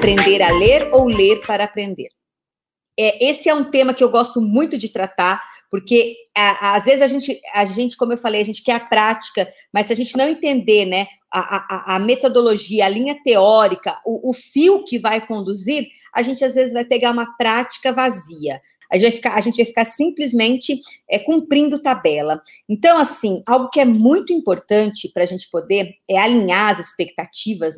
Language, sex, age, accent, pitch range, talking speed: Portuguese, female, 40-59, Brazilian, 205-275 Hz, 195 wpm